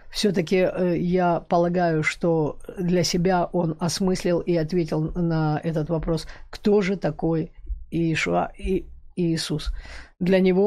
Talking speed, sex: 120 wpm, female